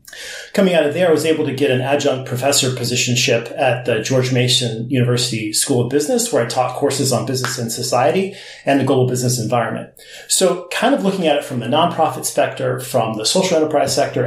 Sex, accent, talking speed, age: male, American, 205 wpm, 40-59